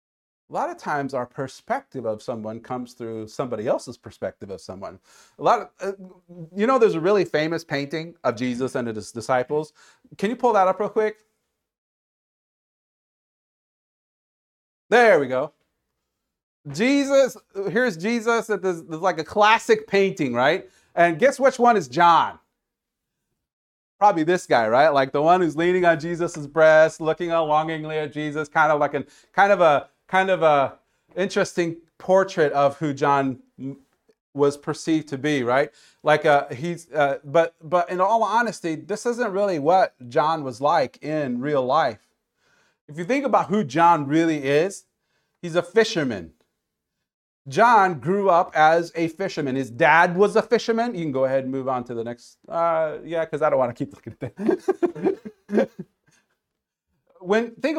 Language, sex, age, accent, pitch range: Japanese, male, 40-59, American, 145-205 Hz